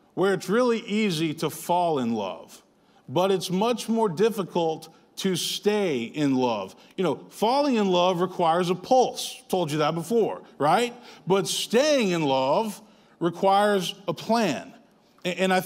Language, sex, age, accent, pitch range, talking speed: English, male, 40-59, American, 165-205 Hz, 150 wpm